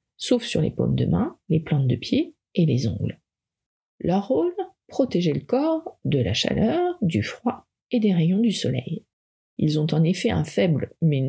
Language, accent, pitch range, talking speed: French, French, 150-235 Hz, 185 wpm